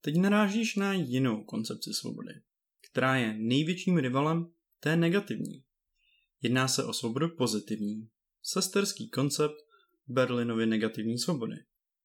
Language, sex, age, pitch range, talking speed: Czech, male, 20-39, 120-160 Hz, 110 wpm